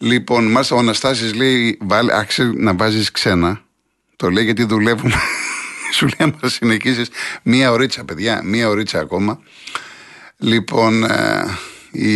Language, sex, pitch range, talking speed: Greek, male, 105-130 Hz, 125 wpm